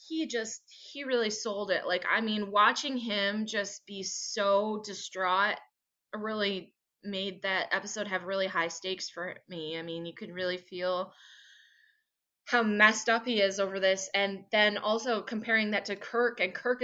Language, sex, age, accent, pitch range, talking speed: English, female, 20-39, American, 180-215 Hz, 170 wpm